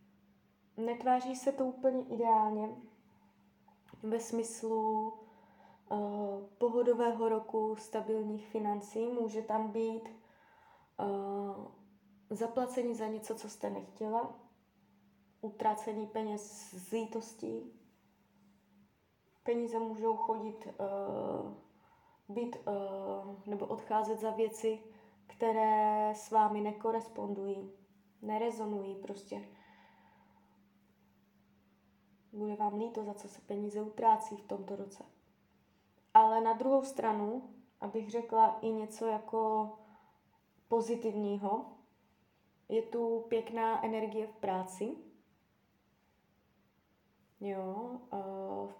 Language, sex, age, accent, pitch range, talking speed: Czech, female, 20-39, native, 205-230 Hz, 85 wpm